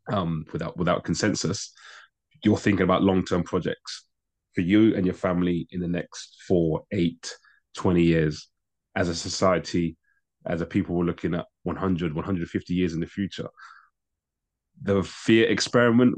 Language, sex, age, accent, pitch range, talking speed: English, male, 20-39, British, 85-100 Hz, 145 wpm